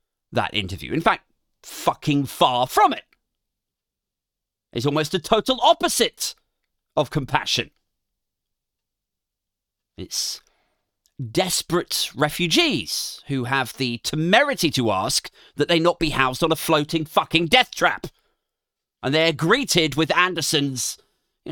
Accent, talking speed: British, 115 wpm